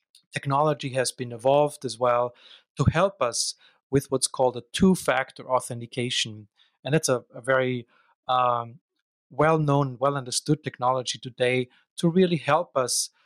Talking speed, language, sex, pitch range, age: 130 wpm, English, male, 120-140 Hz, 30-49